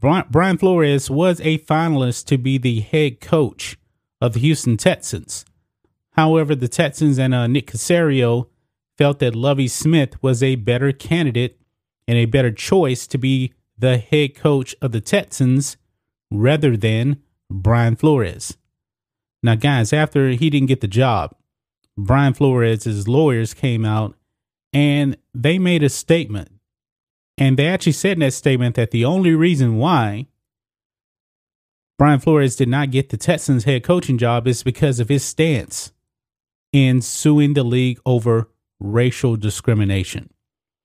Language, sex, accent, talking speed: English, male, American, 145 wpm